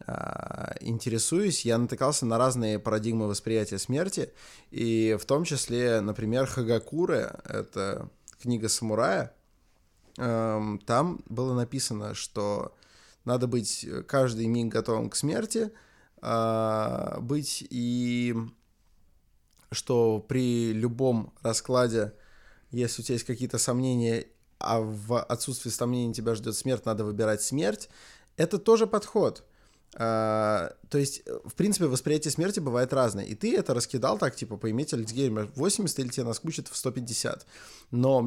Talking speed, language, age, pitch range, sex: 120 wpm, Russian, 20-39, 115-140 Hz, male